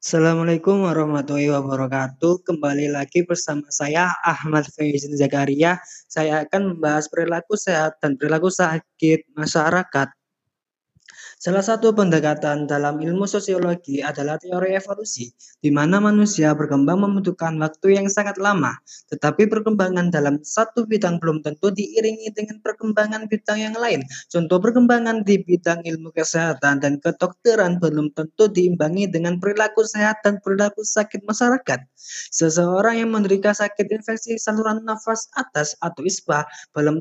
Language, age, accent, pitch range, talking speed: Indonesian, 20-39, native, 160-215 Hz, 130 wpm